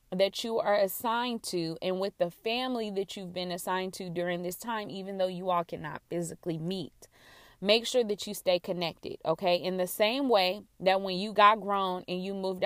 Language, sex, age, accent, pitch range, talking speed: English, female, 20-39, American, 175-210 Hz, 205 wpm